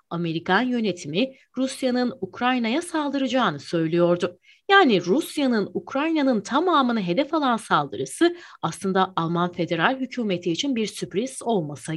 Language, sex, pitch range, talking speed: Turkish, female, 175-270 Hz, 105 wpm